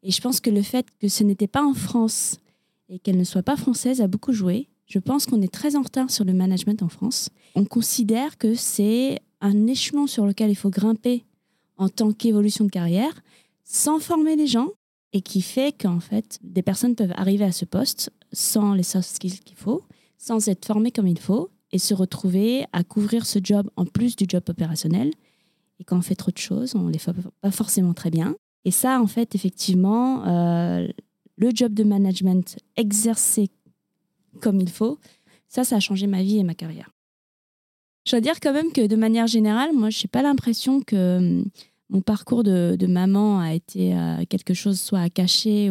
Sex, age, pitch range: female, 20-39, 185-235 Hz